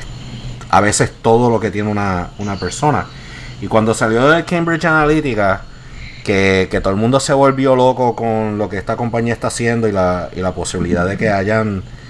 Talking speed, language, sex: 190 wpm, Spanish, male